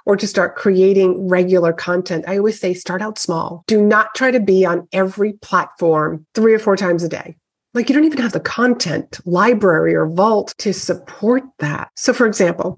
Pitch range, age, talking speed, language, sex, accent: 175-215 Hz, 30-49, 195 wpm, English, female, American